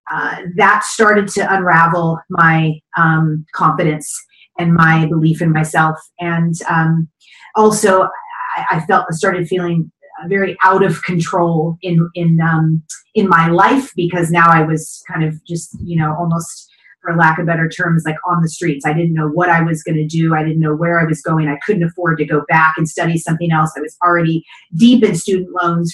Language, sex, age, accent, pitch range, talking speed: English, female, 30-49, American, 160-175 Hz, 195 wpm